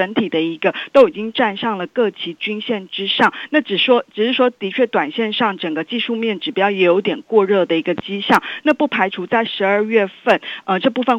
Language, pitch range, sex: Chinese, 185-235 Hz, female